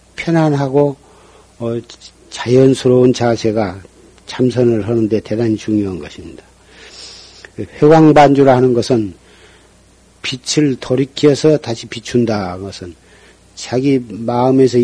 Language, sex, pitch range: Korean, male, 110-145 Hz